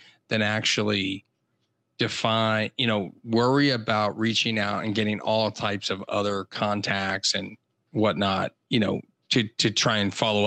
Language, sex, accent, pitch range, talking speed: English, male, American, 105-120 Hz, 145 wpm